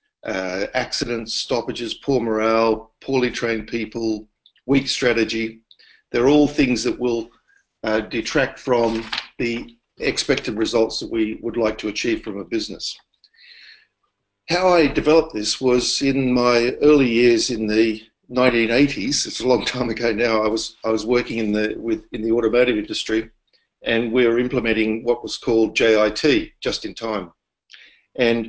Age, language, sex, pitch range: 50-69, English, male, 110-125 Hz